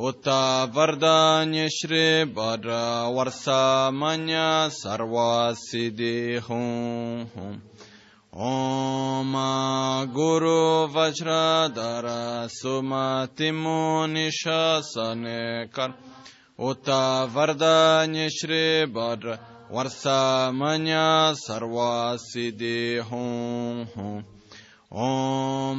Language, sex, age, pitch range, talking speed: Italian, male, 20-39, 120-155 Hz, 40 wpm